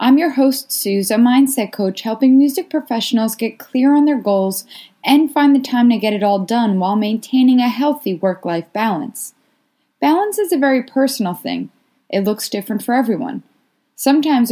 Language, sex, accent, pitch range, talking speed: English, female, American, 205-275 Hz, 175 wpm